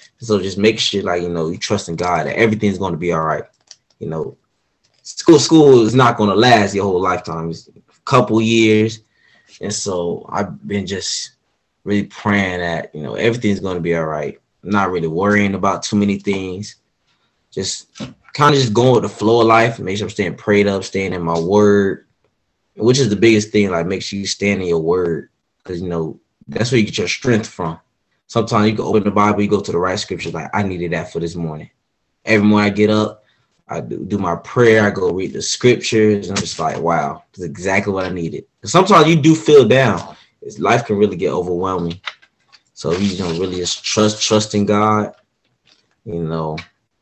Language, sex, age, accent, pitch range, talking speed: English, male, 20-39, American, 95-115 Hz, 210 wpm